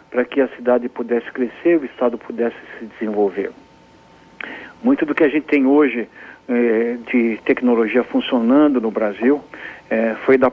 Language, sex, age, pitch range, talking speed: Portuguese, male, 60-79, 120-140 Hz, 155 wpm